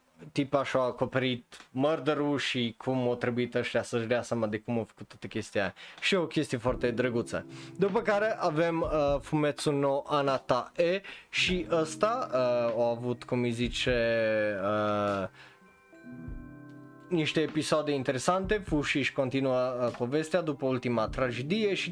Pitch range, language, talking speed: 120-155 Hz, Romanian, 140 wpm